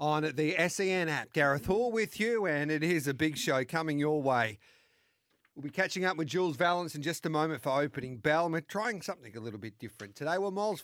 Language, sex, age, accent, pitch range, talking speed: English, male, 40-59, Australian, 135-165 Hz, 235 wpm